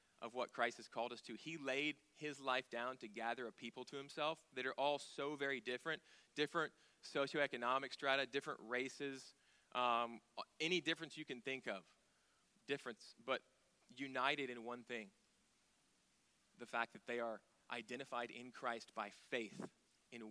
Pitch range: 115-140 Hz